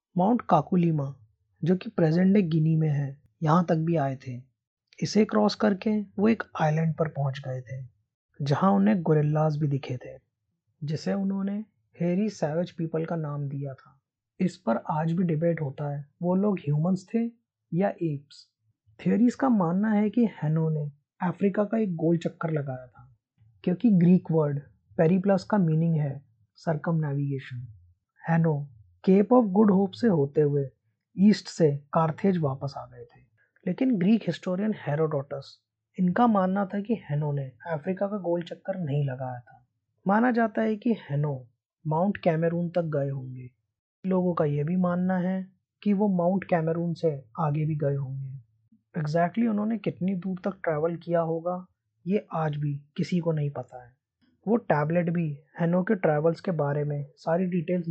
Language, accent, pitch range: Hindi, native, 140-185 Hz